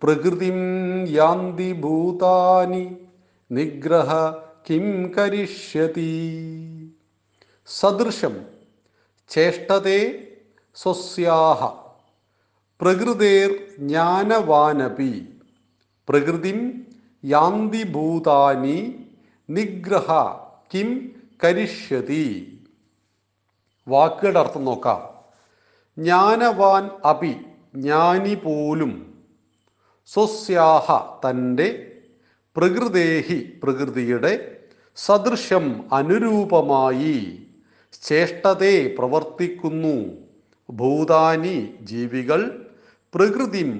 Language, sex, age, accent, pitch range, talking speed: Malayalam, male, 40-59, native, 150-200 Hz, 30 wpm